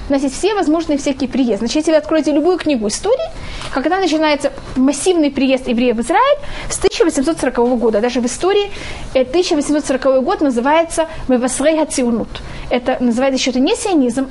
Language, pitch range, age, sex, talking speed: Russian, 235-300 Hz, 20-39, female, 145 wpm